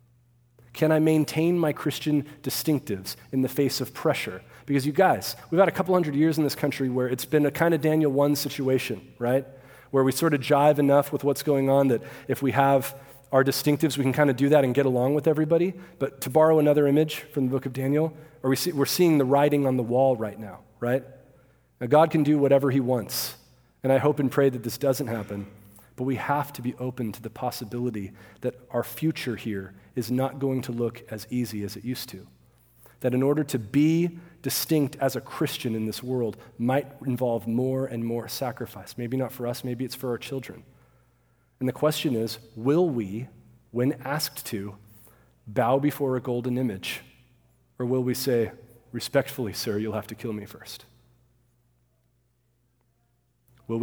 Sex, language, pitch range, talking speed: male, English, 120-140 Hz, 195 wpm